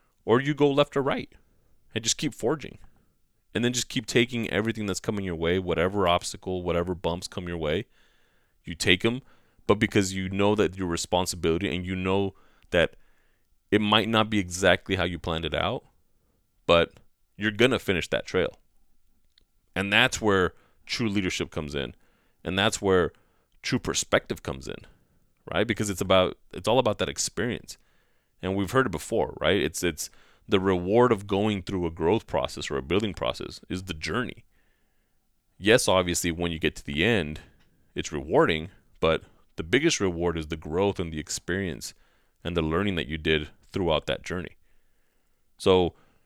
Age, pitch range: 30-49, 85-105 Hz